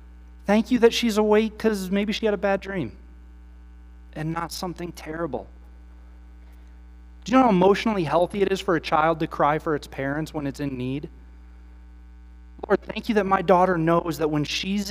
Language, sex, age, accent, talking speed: English, male, 30-49, American, 185 wpm